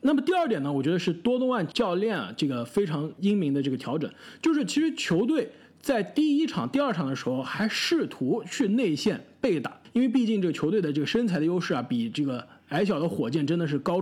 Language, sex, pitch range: Chinese, male, 170-255 Hz